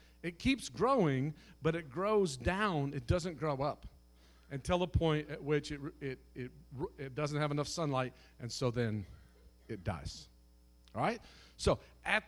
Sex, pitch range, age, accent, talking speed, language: male, 125-205 Hz, 50-69, American, 160 wpm, English